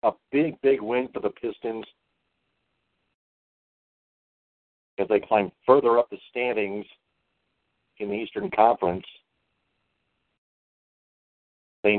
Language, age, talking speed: English, 50-69, 95 wpm